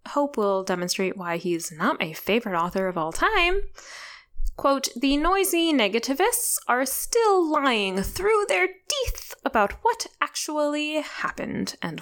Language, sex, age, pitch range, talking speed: English, female, 10-29, 190-315 Hz, 135 wpm